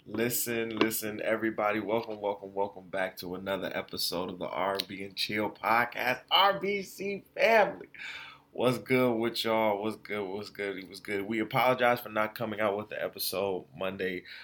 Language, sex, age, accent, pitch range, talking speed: English, male, 20-39, American, 90-110 Hz, 160 wpm